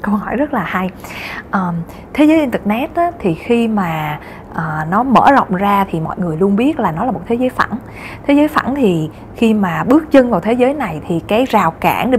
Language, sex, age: Vietnamese, female, 20-39